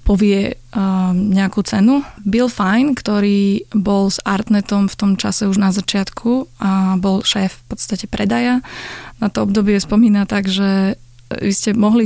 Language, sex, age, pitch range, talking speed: Slovak, female, 20-39, 190-210 Hz, 155 wpm